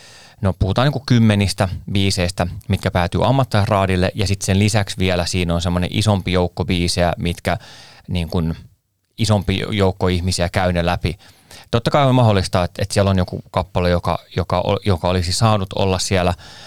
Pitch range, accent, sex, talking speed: 90-110 Hz, native, male, 150 wpm